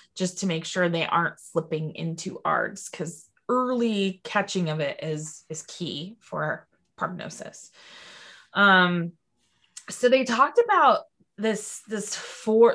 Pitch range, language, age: 175-215 Hz, English, 20-39